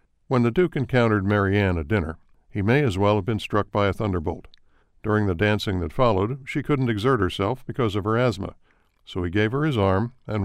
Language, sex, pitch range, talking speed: English, male, 100-125 Hz, 215 wpm